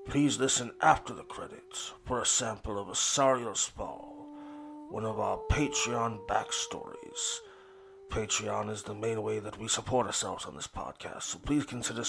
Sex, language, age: male, English, 30-49